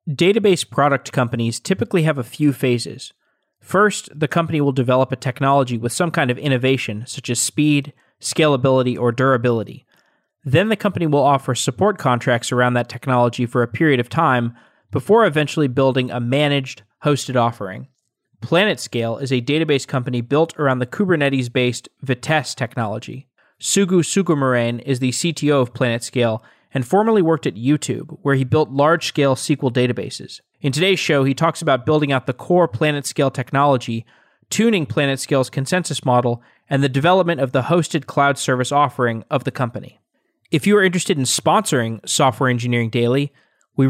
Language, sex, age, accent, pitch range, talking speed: English, male, 20-39, American, 125-155 Hz, 155 wpm